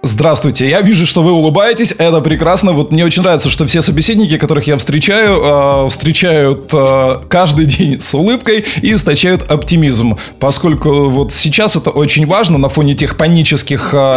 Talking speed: 160 wpm